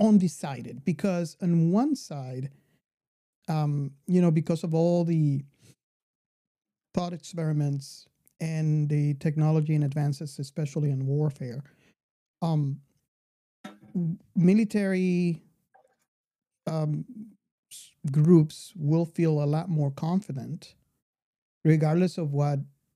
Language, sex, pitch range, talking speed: English, male, 145-180 Hz, 90 wpm